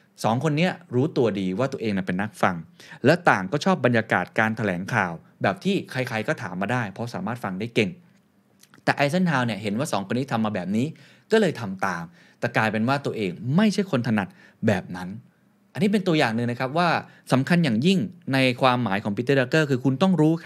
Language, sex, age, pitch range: Thai, male, 20-39, 105-140 Hz